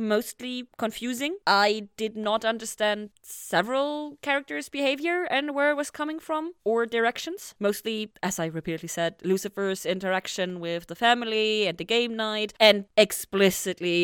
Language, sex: English, female